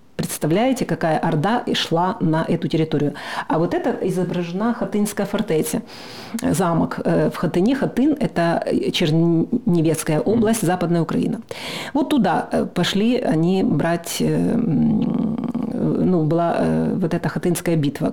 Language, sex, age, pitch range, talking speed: Russian, female, 40-59, 160-195 Hz, 115 wpm